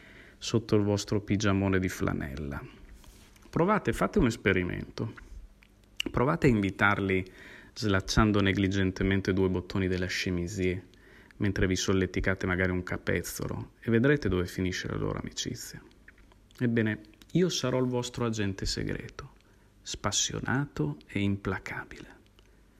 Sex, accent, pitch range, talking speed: male, native, 95-120 Hz, 110 wpm